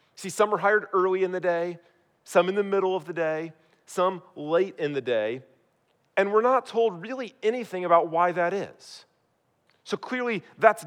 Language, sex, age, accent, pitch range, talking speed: English, male, 40-59, American, 160-205 Hz, 180 wpm